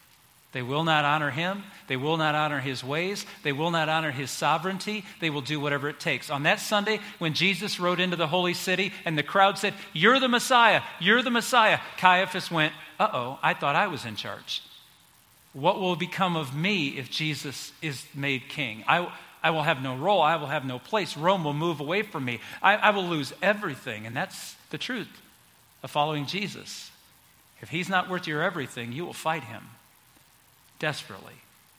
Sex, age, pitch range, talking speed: male, 50-69, 145-195 Hz, 195 wpm